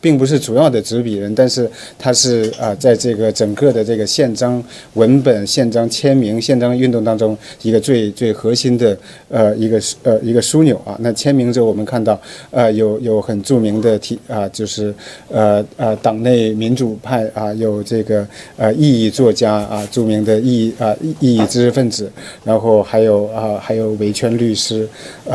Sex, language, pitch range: male, Chinese, 110-130 Hz